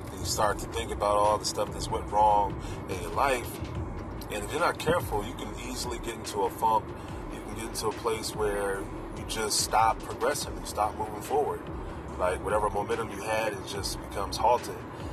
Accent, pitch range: American, 100-120 Hz